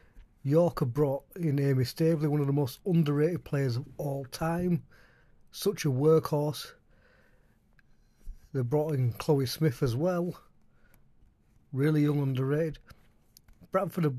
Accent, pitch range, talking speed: British, 135-175 Hz, 125 wpm